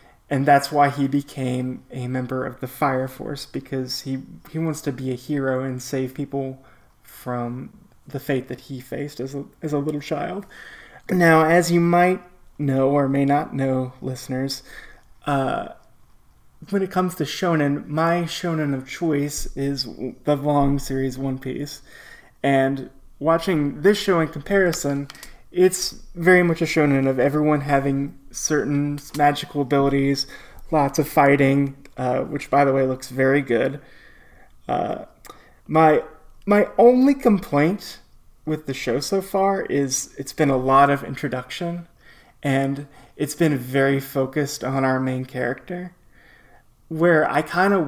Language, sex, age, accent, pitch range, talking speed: English, male, 20-39, American, 135-160 Hz, 150 wpm